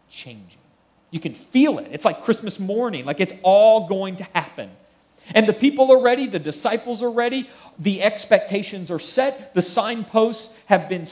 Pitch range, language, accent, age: 150-210 Hz, English, American, 40-59